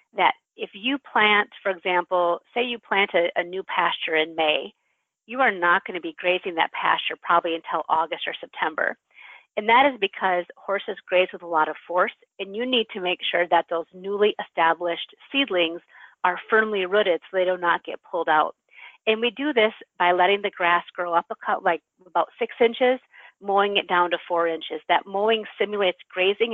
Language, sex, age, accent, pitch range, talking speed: English, female, 40-59, American, 175-225 Hz, 200 wpm